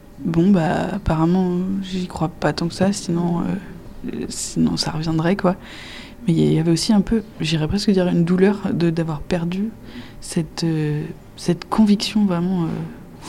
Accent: French